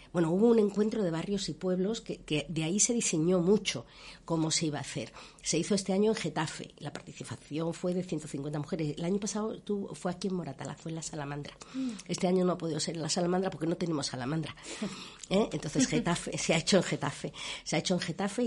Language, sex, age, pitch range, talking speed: Spanish, female, 50-69, 150-180 Hz, 225 wpm